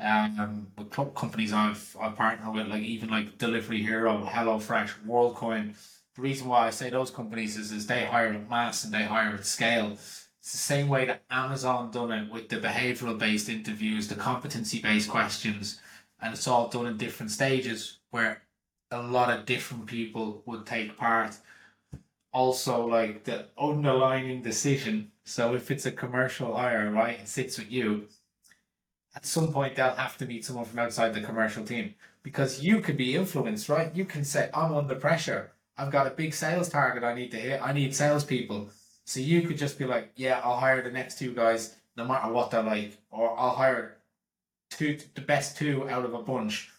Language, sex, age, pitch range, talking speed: English, male, 20-39, 115-135 Hz, 190 wpm